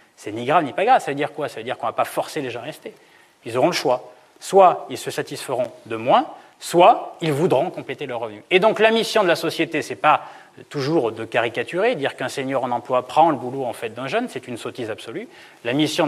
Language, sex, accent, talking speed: French, male, French, 255 wpm